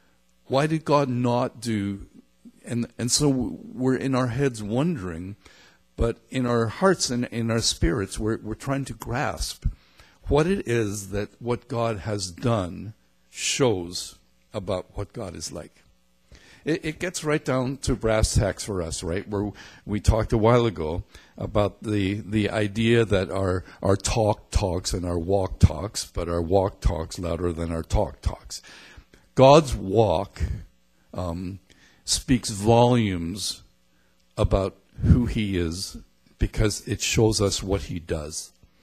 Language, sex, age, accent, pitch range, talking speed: English, male, 60-79, American, 90-120 Hz, 145 wpm